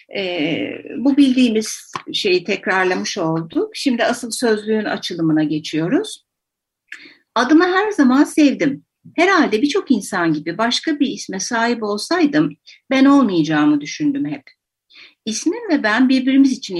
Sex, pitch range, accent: female, 185-290 Hz, native